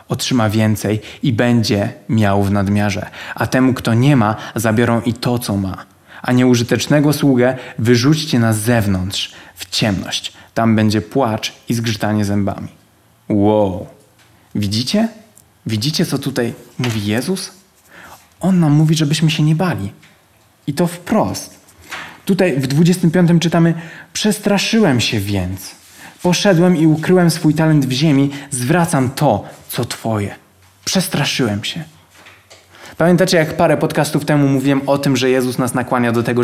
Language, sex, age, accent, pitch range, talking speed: Polish, male, 20-39, native, 110-160 Hz, 135 wpm